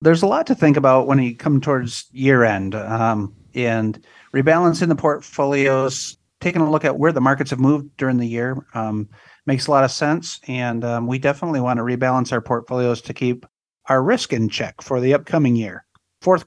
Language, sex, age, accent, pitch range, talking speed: English, male, 50-69, American, 120-145 Hz, 200 wpm